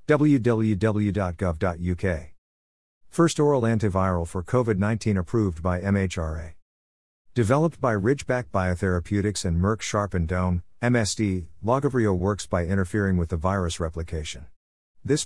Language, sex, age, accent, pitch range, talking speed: English, male, 50-69, American, 90-110 Hz, 105 wpm